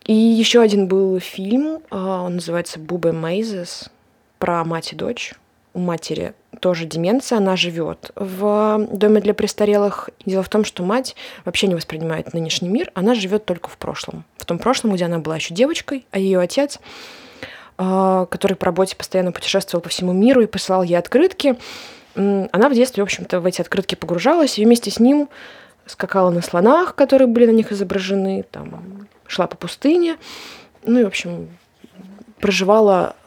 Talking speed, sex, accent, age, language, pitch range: 165 wpm, female, native, 20-39, Russian, 170-215 Hz